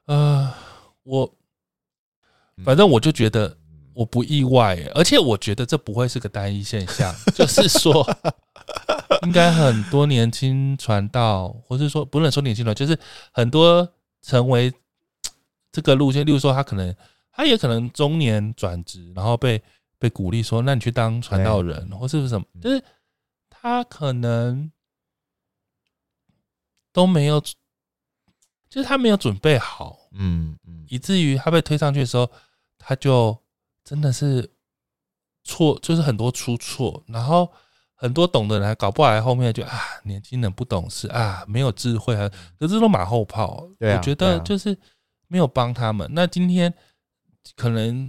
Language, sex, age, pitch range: Chinese, male, 20-39, 105-145 Hz